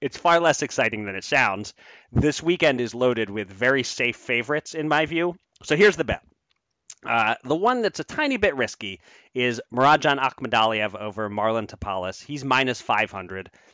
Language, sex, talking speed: English, male, 170 wpm